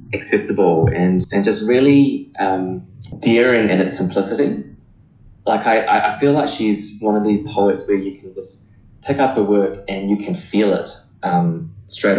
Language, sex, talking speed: German, male, 170 wpm